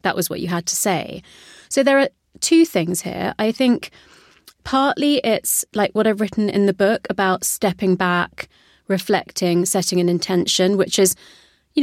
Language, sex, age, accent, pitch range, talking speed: English, female, 30-49, British, 180-215 Hz, 170 wpm